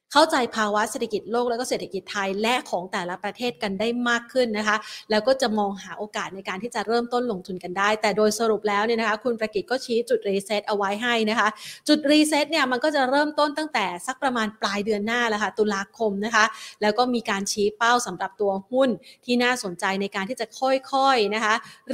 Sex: female